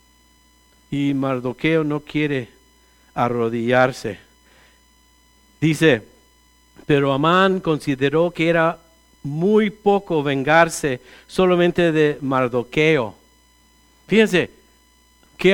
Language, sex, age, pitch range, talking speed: English, male, 50-69, 140-190 Hz, 75 wpm